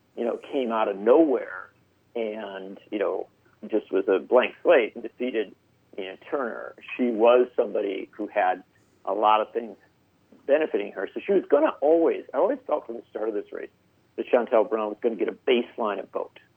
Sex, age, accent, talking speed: male, 50-69, American, 200 wpm